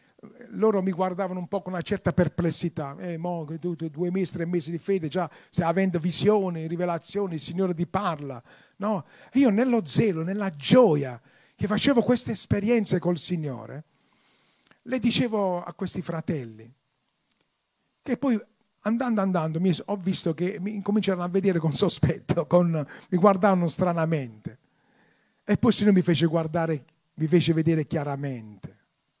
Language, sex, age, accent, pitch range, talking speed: Italian, male, 40-59, native, 135-185 Hz, 145 wpm